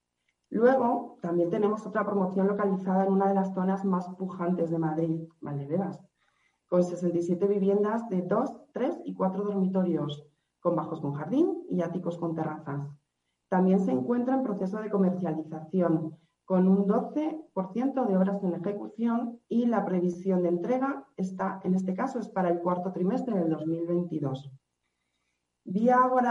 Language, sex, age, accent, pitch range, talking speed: Spanish, female, 40-59, Spanish, 165-200 Hz, 145 wpm